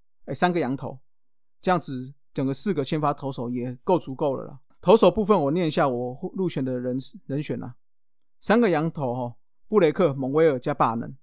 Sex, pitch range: male, 130-165 Hz